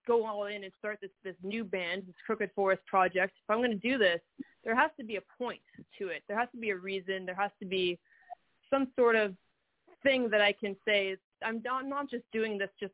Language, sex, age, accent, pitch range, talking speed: English, female, 20-39, American, 190-225 Hz, 245 wpm